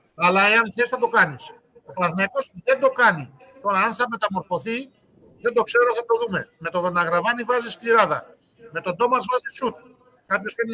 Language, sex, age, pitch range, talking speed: Greek, male, 50-69, 175-230 Hz, 185 wpm